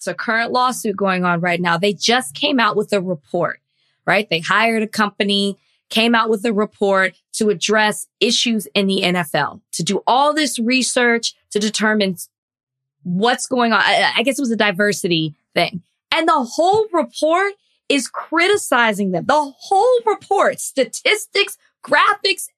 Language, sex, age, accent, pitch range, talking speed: English, female, 20-39, American, 195-270 Hz, 160 wpm